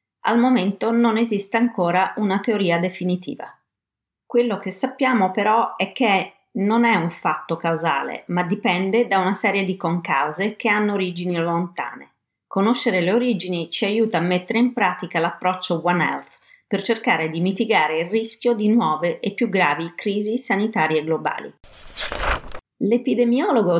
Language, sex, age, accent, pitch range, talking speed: Italian, female, 30-49, native, 165-215 Hz, 145 wpm